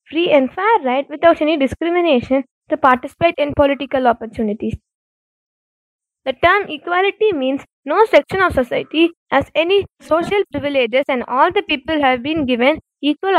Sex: female